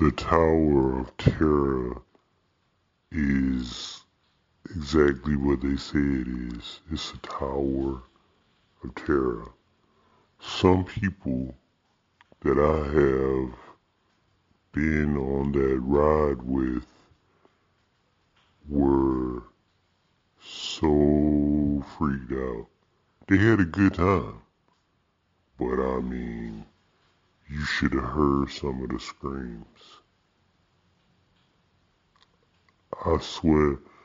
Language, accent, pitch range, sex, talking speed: English, American, 65-80 Hz, female, 85 wpm